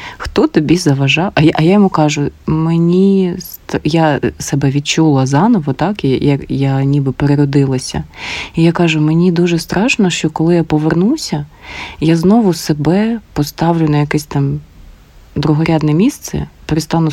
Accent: native